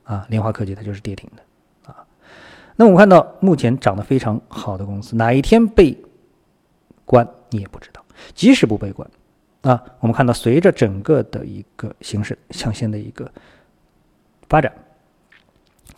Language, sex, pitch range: Chinese, male, 105-135 Hz